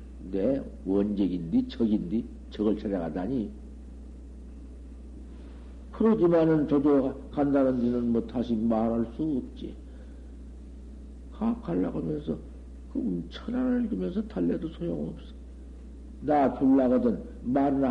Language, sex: Korean, male